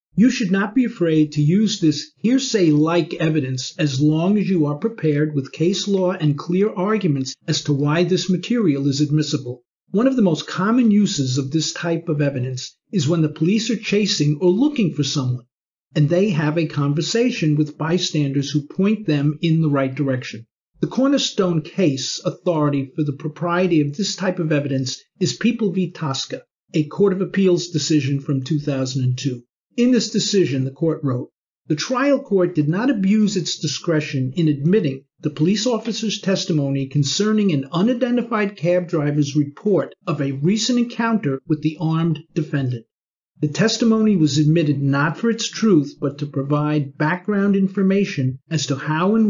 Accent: American